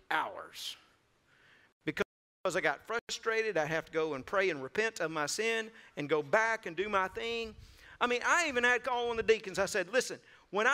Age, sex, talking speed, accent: 50-69, male, 205 wpm, American